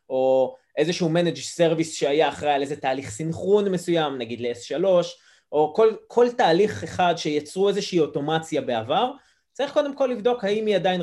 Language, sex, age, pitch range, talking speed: Hebrew, male, 20-39, 150-205 Hz, 160 wpm